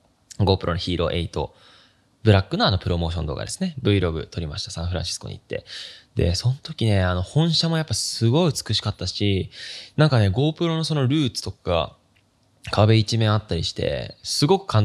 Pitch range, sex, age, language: 95-140 Hz, male, 20-39, Japanese